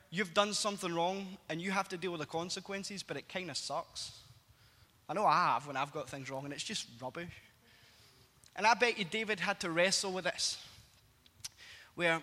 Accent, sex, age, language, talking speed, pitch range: British, male, 10-29, English, 195 wpm, 130-195 Hz